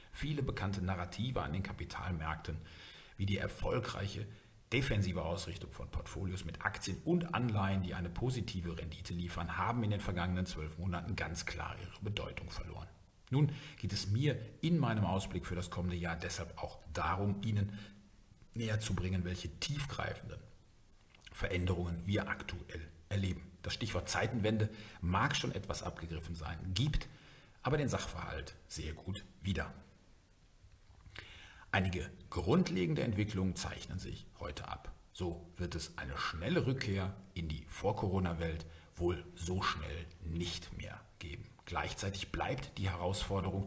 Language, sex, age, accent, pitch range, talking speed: German, male, 50-69, German, 85-105 Hz, 135 wpm